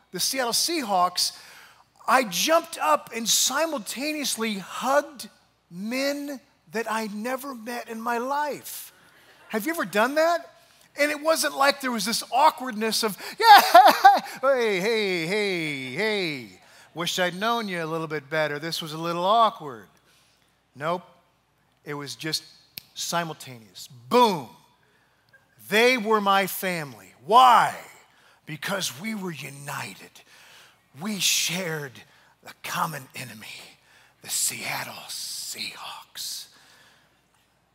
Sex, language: male, English